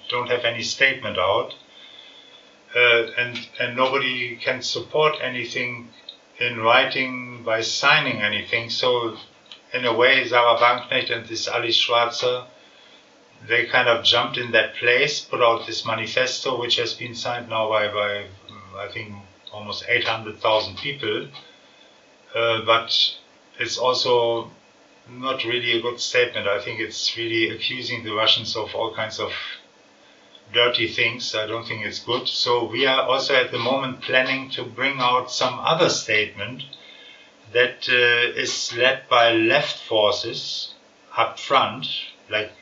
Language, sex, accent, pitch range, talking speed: English, male, German, 115-130 Hz, 145 wpm